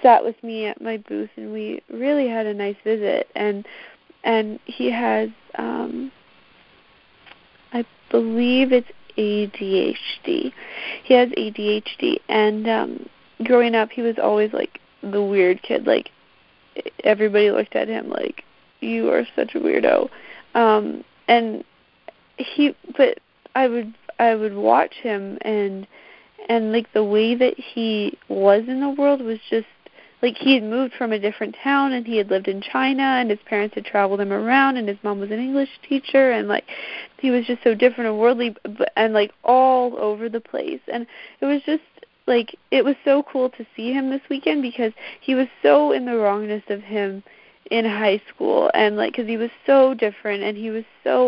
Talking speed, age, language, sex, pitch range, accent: 175 wpm, 30-49, English, female, 210-260 Hz, American